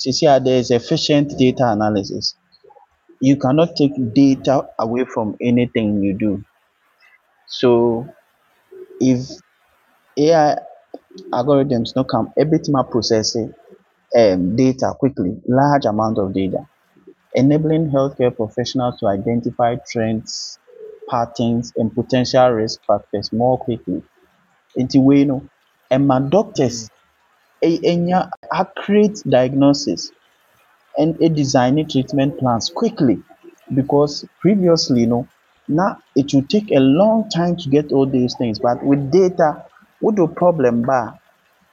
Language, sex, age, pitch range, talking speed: English, male, 30-49, 120-155 Hz, 115 wpm